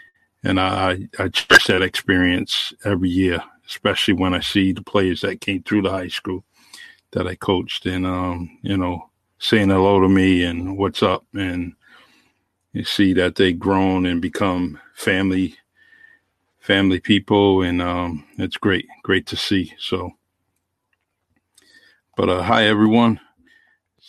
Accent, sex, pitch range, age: American, male, 90-105 Hz, 50-69